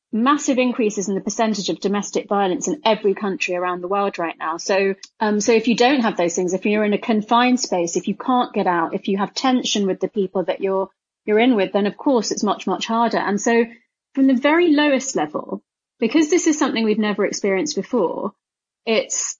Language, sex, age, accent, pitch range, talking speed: English, female, 30-49, British, 195-245 Hz, 220 wpm